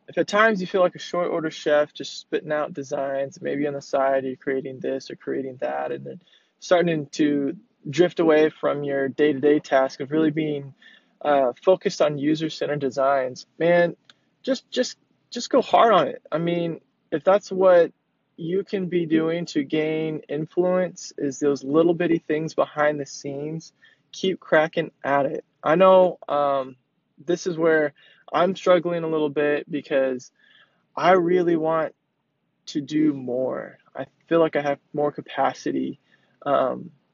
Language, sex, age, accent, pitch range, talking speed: English, male, 20-39, American, 145-180 Hz, 160 wpm